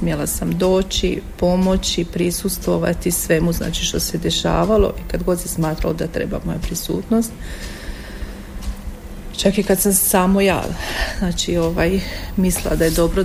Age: 40-59